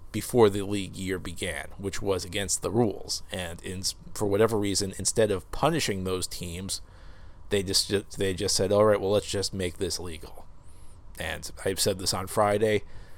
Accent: American